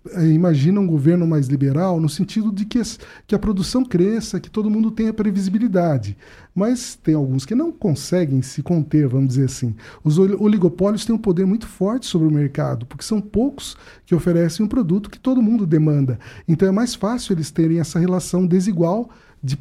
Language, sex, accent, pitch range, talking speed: Portuguese, male, Brazilian, 155-220 Hz, 185 wpm